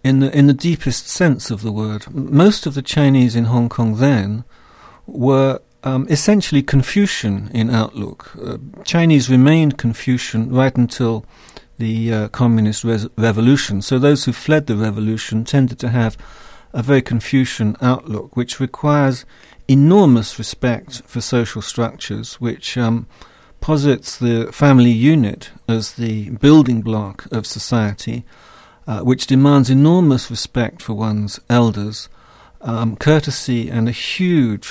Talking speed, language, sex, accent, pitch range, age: 135 wpm, English, male, British, 110-130 Hz, 50-69